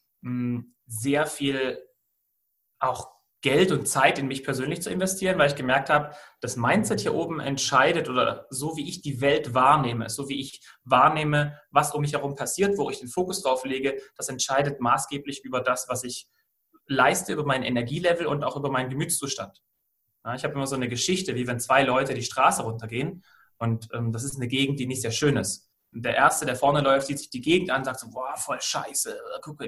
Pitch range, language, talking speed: 125-150 Hz, German, 200 wpm